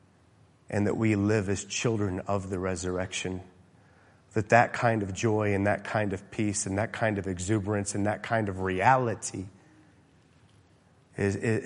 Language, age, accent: English, 30-49, American